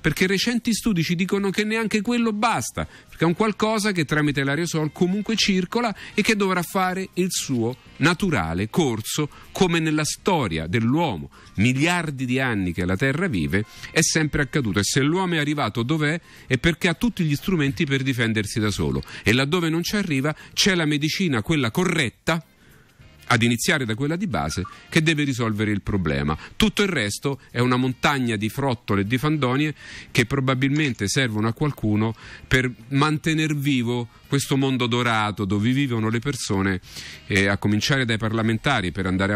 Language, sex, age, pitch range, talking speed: Italian, male, 40-59, 105-160 Hz, 170 wpm